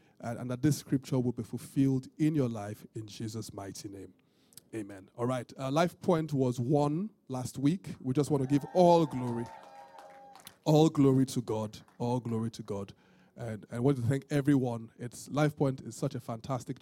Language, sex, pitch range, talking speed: English, male, 120-145 Hz, 190 wpm